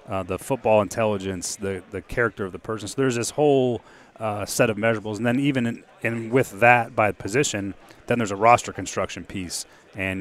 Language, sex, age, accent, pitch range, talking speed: English, male, 30-49, American, 100-115 Hz, 195 wpm